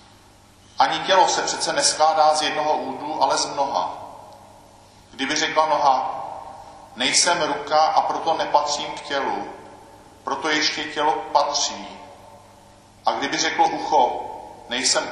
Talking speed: 120 wpm